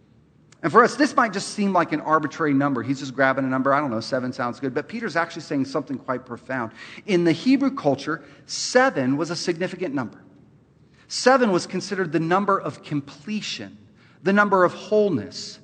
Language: English